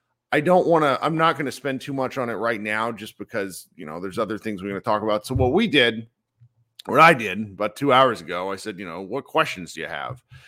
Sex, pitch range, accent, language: male, 110-150 Hz, American, English